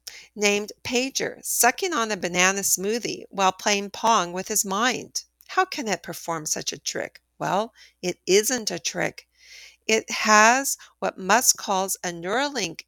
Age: 50-69